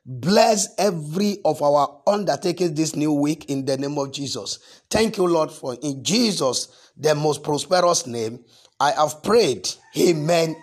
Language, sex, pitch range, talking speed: English, male, 160-235 Hz, 150 wpm